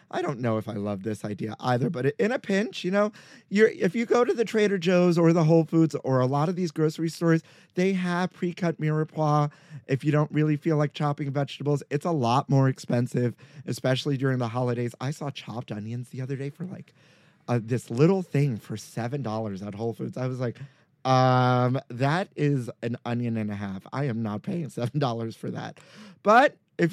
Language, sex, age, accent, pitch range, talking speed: English, male, 30-49, American, 125-170 Hz, 205 wpm